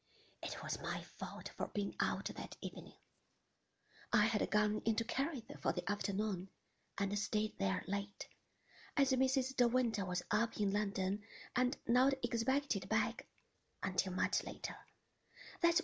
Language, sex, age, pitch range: Chinese, female, 40-59, 200-270 Hz